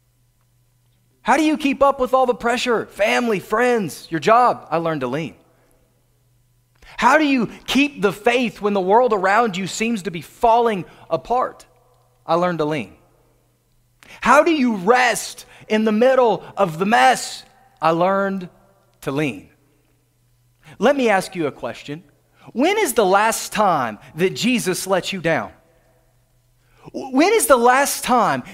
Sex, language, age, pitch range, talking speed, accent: male, English, 30-49, 155-250 Hz, 150 wpm, American